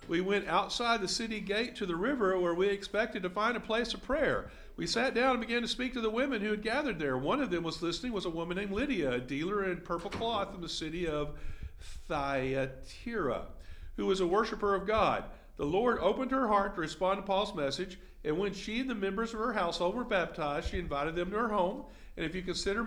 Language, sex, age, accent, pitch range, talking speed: English, male, 50-69, American, 145-205 Hz, 235 wpm